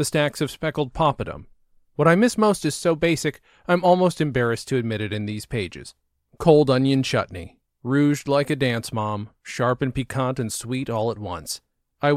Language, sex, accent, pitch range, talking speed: English, male, American, 115-155 Hz, 185 wpm